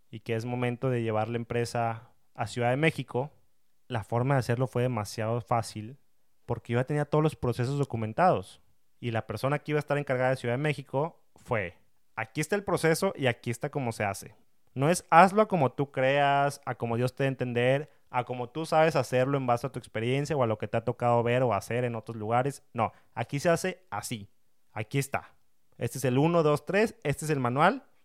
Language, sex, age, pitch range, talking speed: Spanish, male, 30-49, 115-145 Hz, 220 wpm